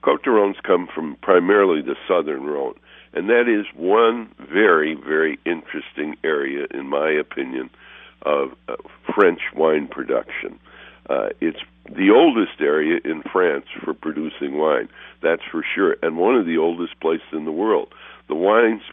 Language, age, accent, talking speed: English, 60-79, American, 150 wpm